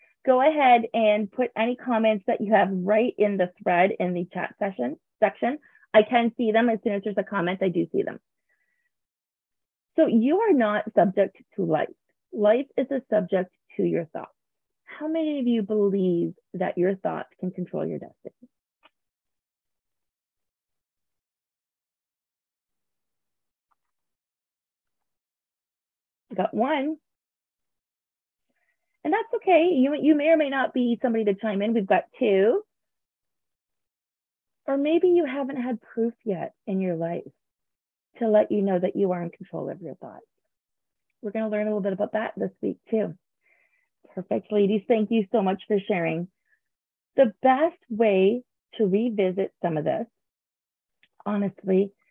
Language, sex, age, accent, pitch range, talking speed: English, female, 30-49, American, 190-255 Hz, 150 wpm